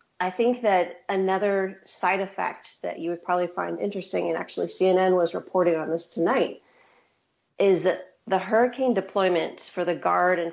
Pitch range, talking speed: 170-190 Hz, 165 wpm